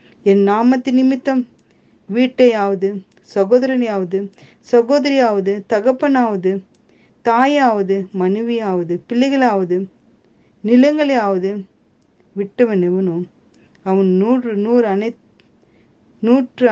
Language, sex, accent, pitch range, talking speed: Tamil, female, native, 185-230 Hz, 55 wpm